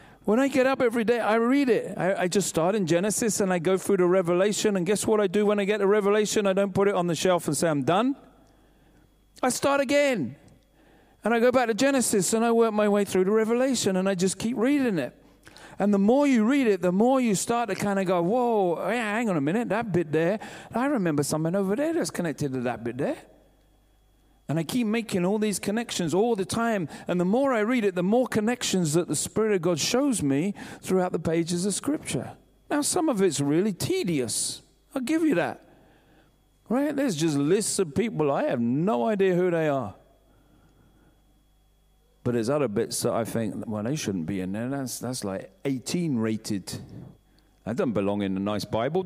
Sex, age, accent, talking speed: male, 40-59, British, 215 wpm